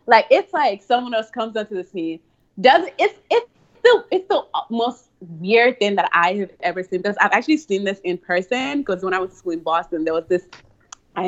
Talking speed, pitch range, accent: 230 wpm, 185-260 Hz, American